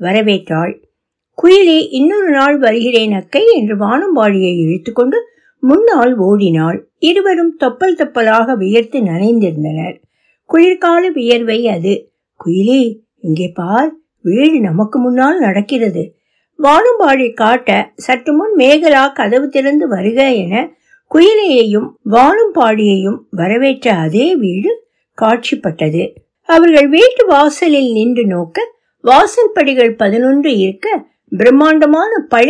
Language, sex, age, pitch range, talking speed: Tamil, female, 60-79, 210-320 Hz, 85 wpm